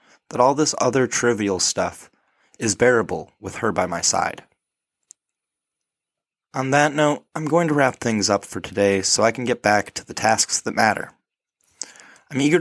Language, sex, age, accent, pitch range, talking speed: English, male, 20-39, American, 100-130 Hz, 170 wpm